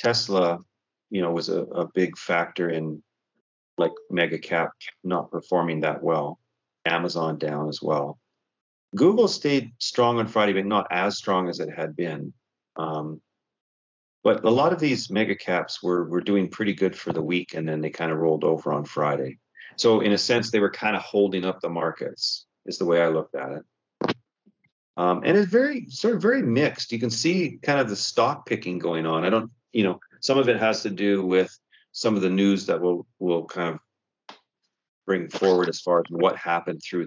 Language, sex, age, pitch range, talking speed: English, male, 40-59, 85-115 Hz, 200 wpm